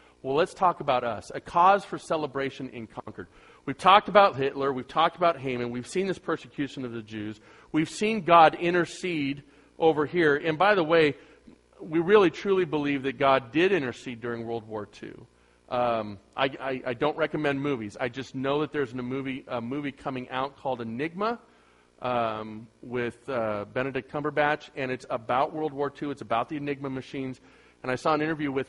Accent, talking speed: American, 190 wpm